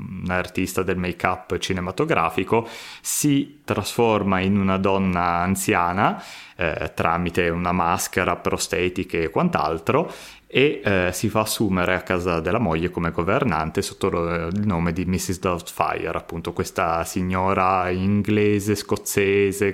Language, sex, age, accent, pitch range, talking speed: Italian, male, 20-39, native, 90-100 Hz, 125 wpm